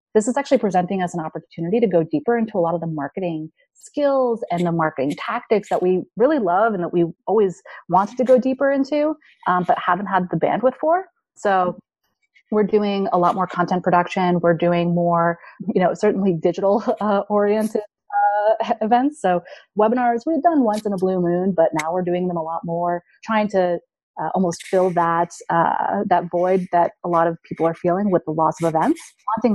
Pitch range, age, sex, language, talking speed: 170-215 Hz, 30-49, female, English, 200 wpm